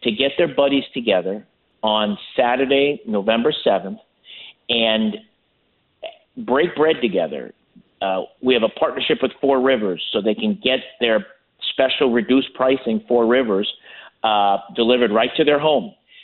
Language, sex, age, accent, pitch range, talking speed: English, male, 50-69, American, 115-145 Hz, 135 wpm